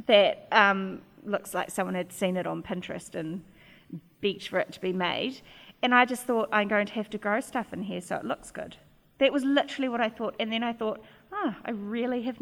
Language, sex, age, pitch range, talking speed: English, female, 30-49, 185-225 Hz, 235 wpm